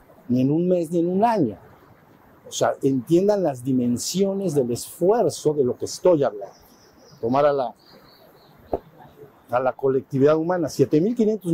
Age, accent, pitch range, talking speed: 50-69, Mexican, 130-170 Hz, 145 wpm